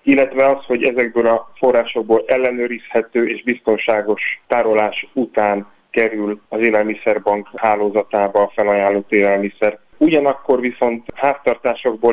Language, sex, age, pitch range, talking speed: Hungarian, male, 30-49, 105-120 Hz, 105 wpm